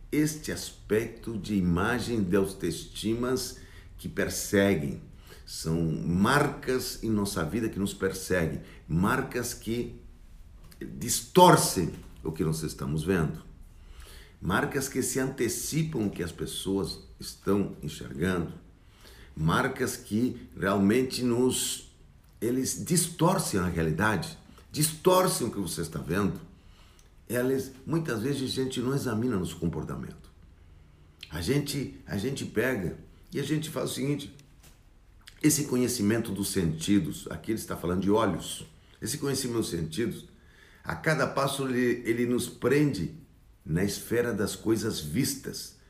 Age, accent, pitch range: 60-79, Brazilian, 90-130 Hz